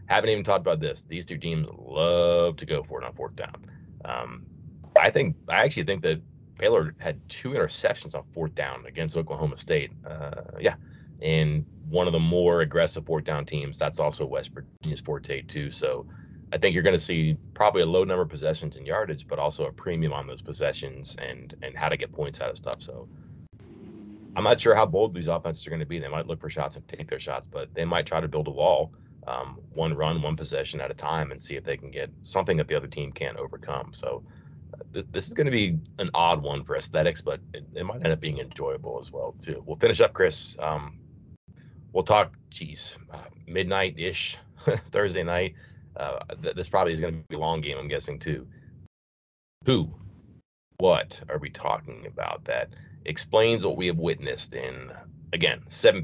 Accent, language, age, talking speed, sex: American, English, 30-49, 210 wpm, male